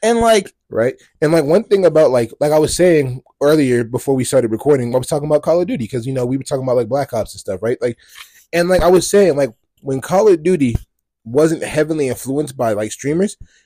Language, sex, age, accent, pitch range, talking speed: English, male, 20-39, American, 130-185 Hz, 240 wpm